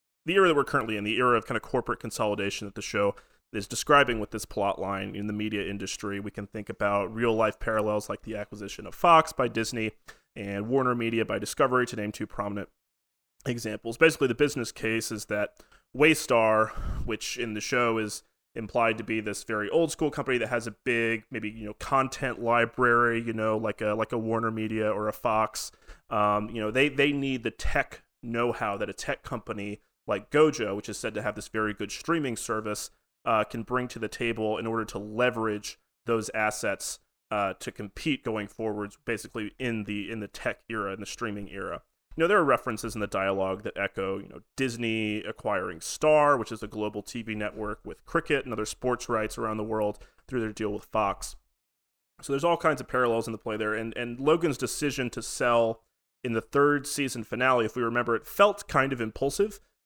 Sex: male